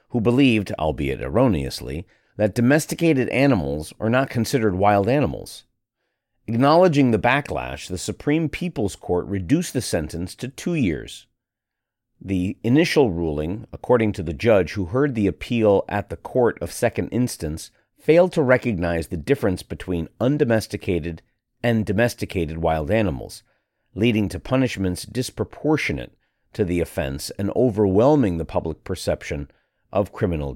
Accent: American